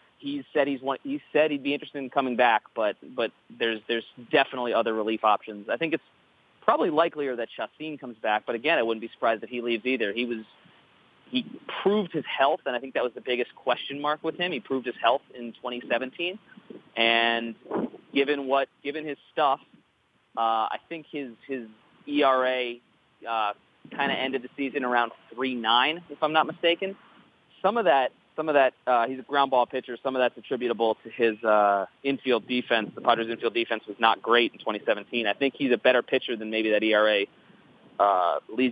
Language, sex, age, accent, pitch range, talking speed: English, male, 30-49, American, 115-140 Hz, 195 wpm